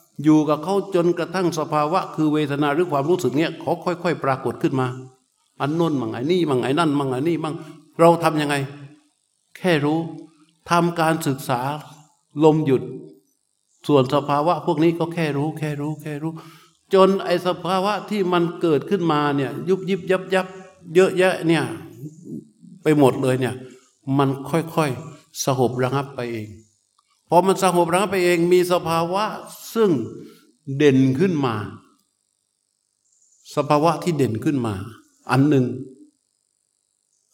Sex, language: male, Thai